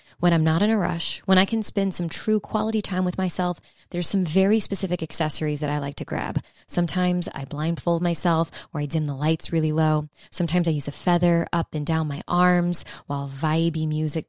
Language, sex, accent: English, female, American